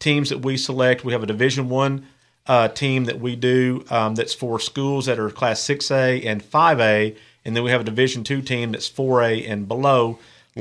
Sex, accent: male, American